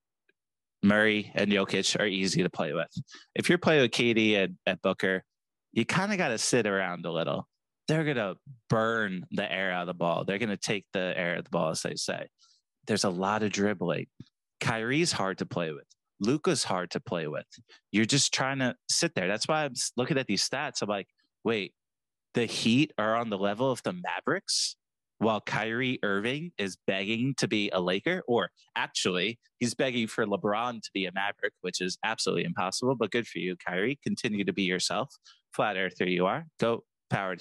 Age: 30-49